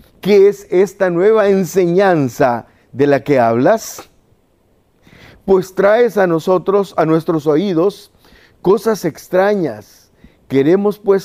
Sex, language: male, Spanish